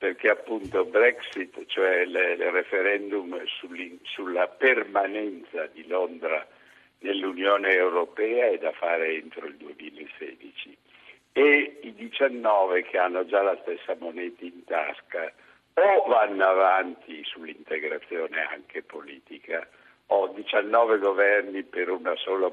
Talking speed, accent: 110 wpm, native